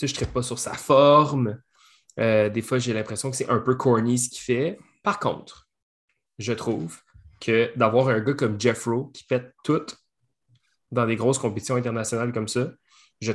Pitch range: 115-135 Hz